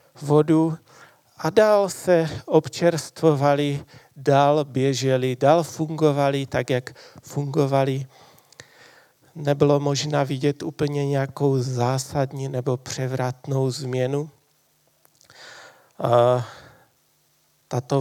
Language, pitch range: Czech, 130-150 Hz